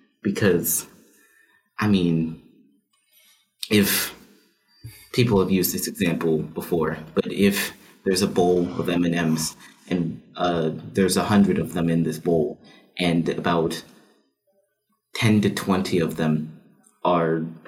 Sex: male